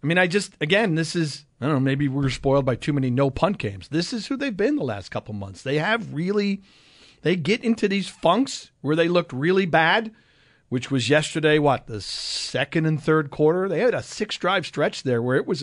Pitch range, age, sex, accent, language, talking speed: 135-190 Hz, 40-59, male, American, English, 225 wpm